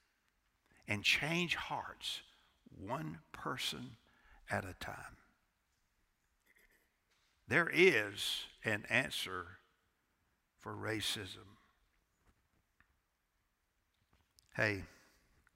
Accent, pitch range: American, 85-120 Hz